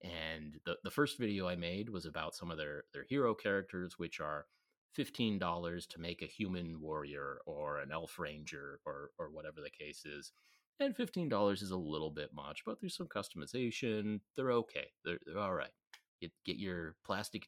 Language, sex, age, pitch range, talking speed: English, male, 30-49, 85-110 Hz, 190 wpm